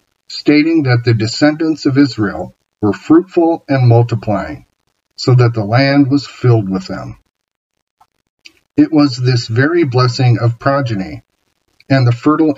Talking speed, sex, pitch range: 135 wpm, male, 115-140 Hz